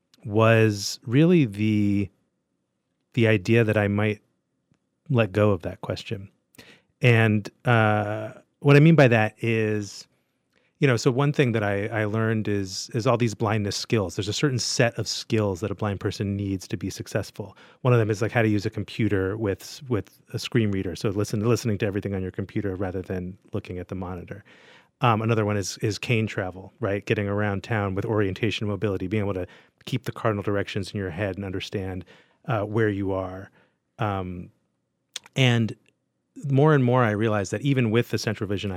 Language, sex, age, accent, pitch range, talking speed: English, male, 30-49, American, 100-115 Hz, 190 wpm